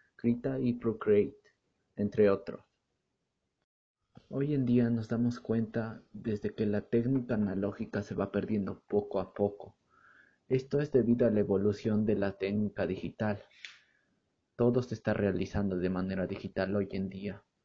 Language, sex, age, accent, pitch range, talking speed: Spanish, male, 30-49, Mexican, 100-120 Hz, 140 wpm